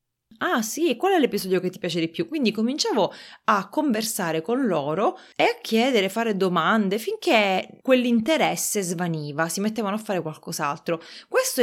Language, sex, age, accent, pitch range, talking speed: Italian, female, 20-39, native, 170-225 Hz, 155 wpm